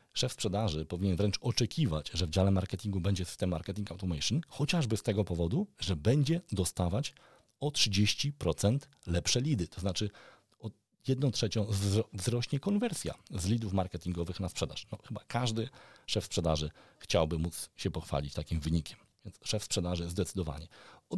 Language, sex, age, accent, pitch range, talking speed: Polish, male, 40-59, native, 90-120 Hz, 145 wpm